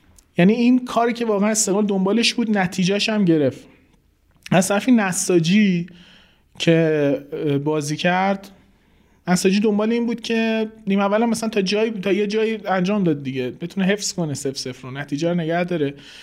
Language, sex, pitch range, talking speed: Persian, male, 160-200 Hz, 150 wpm